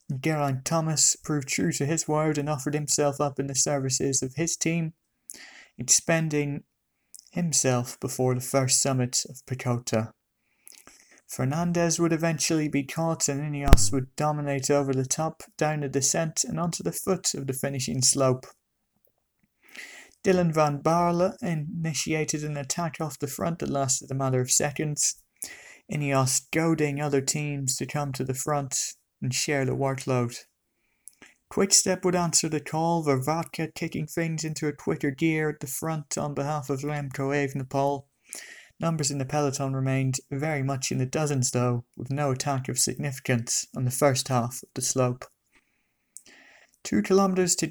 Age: 30-49